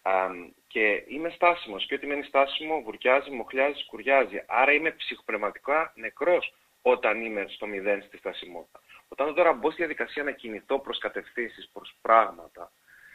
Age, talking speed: 30-49, 140 wpm